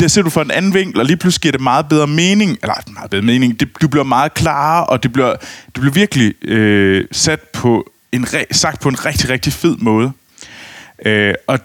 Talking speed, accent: 220 wpm, native